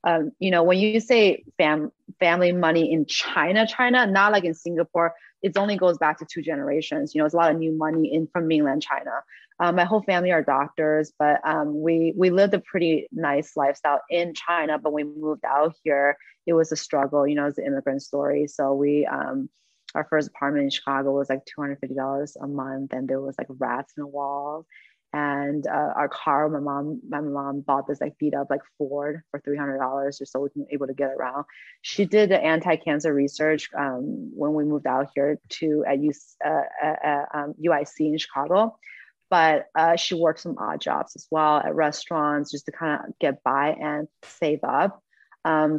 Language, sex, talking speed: English, female, 205 wpm